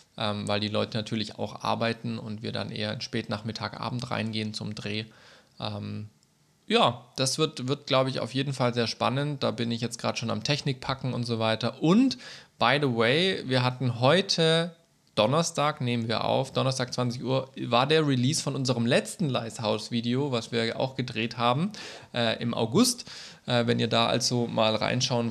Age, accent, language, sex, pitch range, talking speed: 20-39, German, German, male, 110-130 Hz, 185 wpm